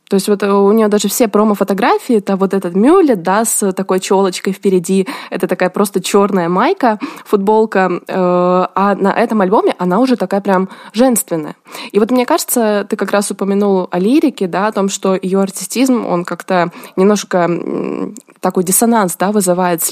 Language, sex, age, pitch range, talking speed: Russian, female, 20-39, 180-220 Hz, 170 wpm